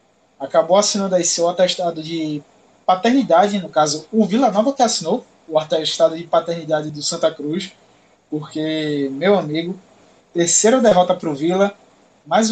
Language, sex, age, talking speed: Portuguese, male, 20-39, 145 wpm